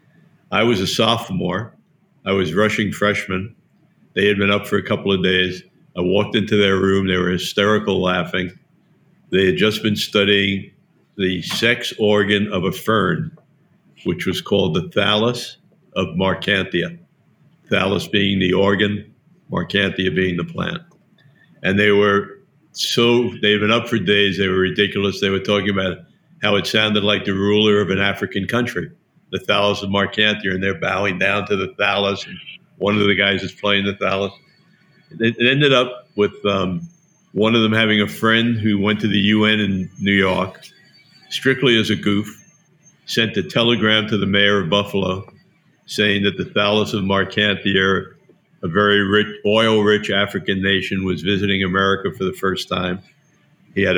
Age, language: 60-79, English